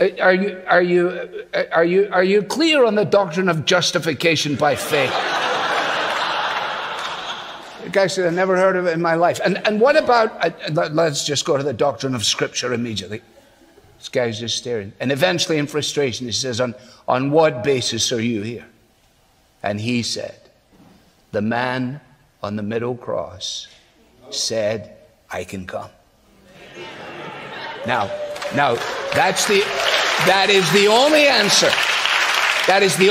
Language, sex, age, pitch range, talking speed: English, male, 60-79, 150-195 Hz, 145 wpm